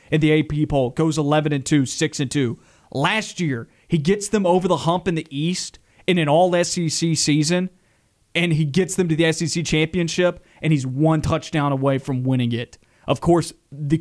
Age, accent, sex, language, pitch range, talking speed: 30-49, American, male, English, 140-170 Hz, 175 wpm